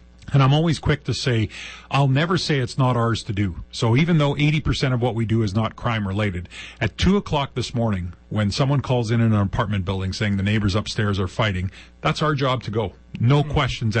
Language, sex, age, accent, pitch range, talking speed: English, male, 40-59, American, 100-130 Hz, 220 wpm